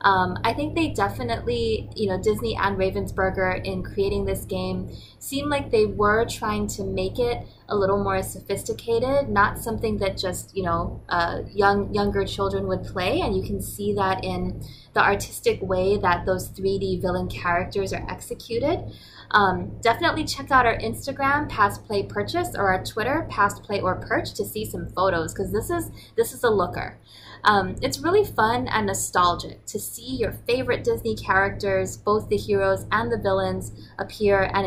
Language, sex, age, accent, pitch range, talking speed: English, female, 20-39, American, 180-225 Hz, 175 wpm